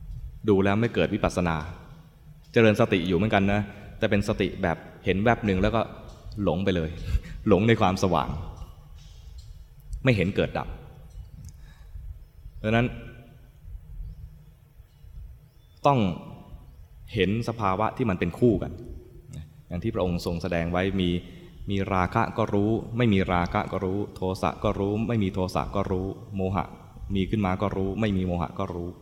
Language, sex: English, male